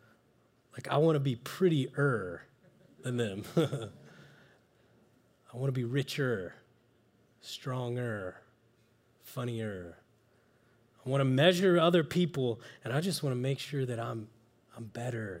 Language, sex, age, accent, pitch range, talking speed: English, male, 20-39, American, 120-175 Hz, 125 wpm